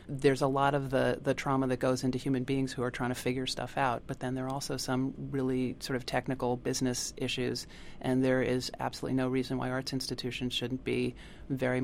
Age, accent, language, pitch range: 30-49, American, English, 125-135 Hz